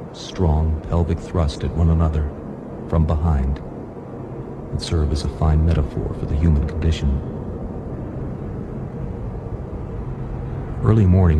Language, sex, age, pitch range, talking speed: English, male, 50-69, 75-95 Hz, 105 wpm